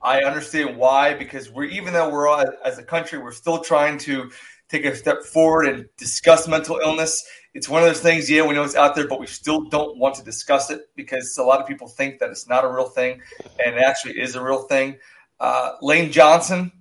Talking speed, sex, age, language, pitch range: 230 wpm, male, 30-49, English, 140-170 Hz